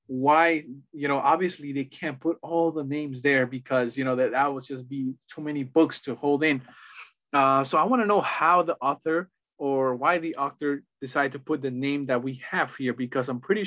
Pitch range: 130-150 Hz